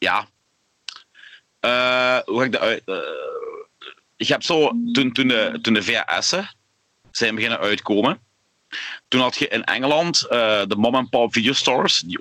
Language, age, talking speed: Dutch, 30-49, 145 wpm